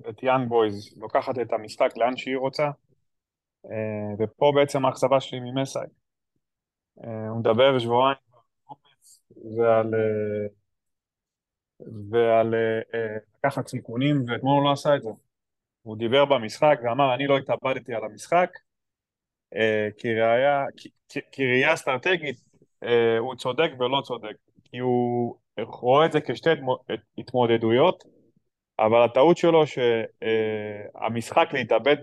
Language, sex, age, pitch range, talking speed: Hebrew, male, 20-39, 115-140 Hz, 60 wpm